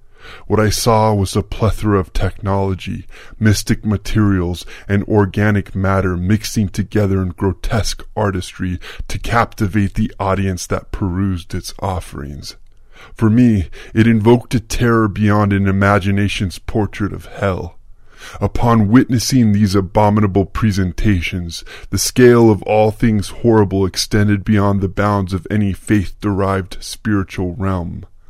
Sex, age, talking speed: female, 20-39, 125 wpm